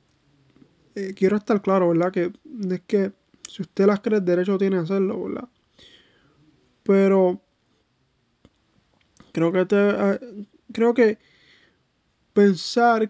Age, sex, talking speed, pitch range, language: 20-39, male, 120 wpm, 185-210 Hz, English